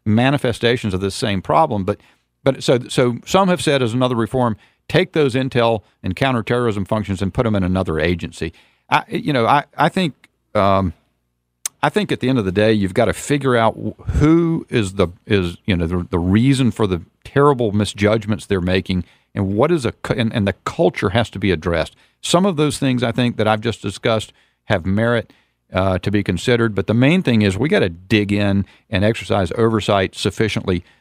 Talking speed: 200 wpm